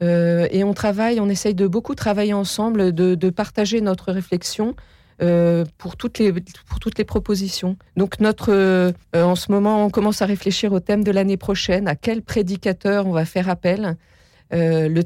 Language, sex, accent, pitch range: French, female, French, 165-200 Hz